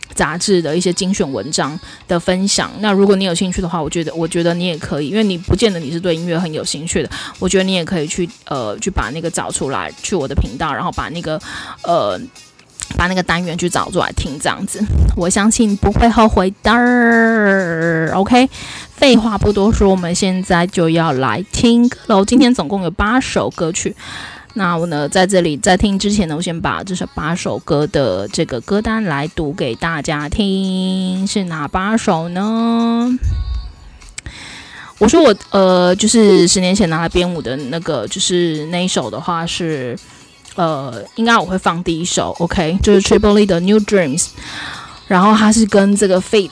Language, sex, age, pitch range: Chinese, female, 20-39, 165-205 Hz